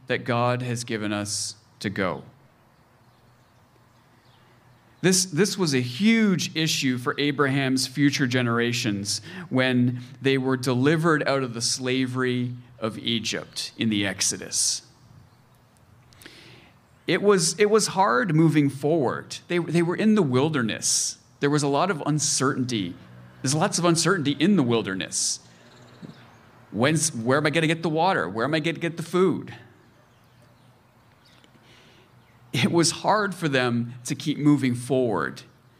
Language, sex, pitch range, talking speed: English, male, 120-145 Hz, 130 wpm